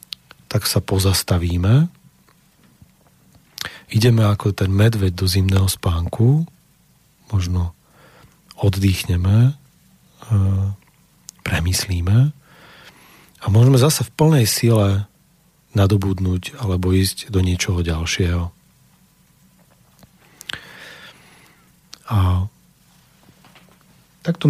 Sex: male